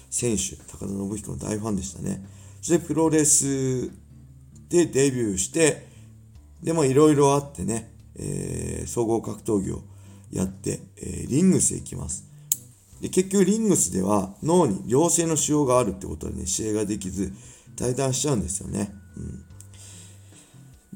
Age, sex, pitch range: 40-59, male, 95-135 Hz